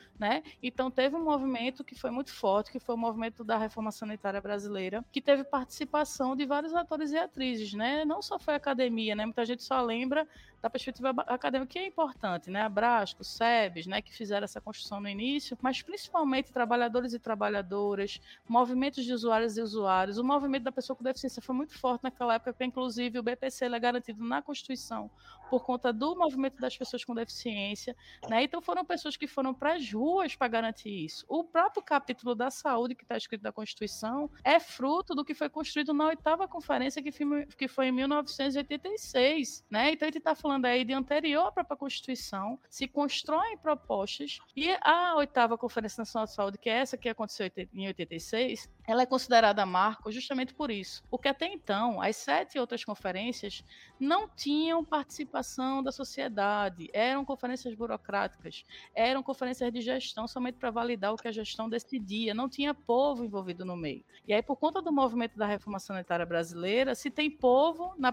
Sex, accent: female, Brazilian